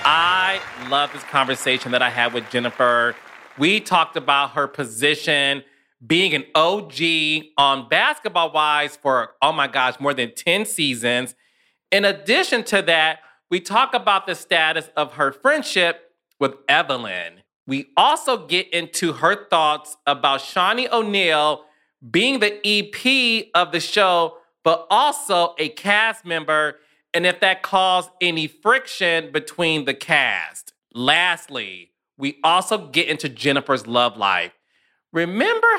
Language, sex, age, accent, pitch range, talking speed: English, male, 30-49, American, 140-180 Hz, 135 wpm